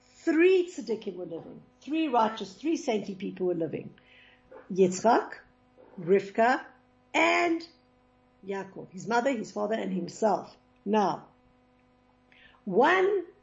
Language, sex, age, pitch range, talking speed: English, female, 60-79, 200-260 Hz, 105 wpm